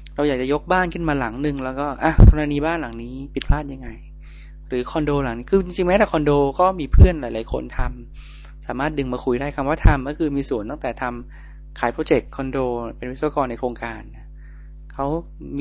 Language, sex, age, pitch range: Thai, male, 20-39, 120-155 Hz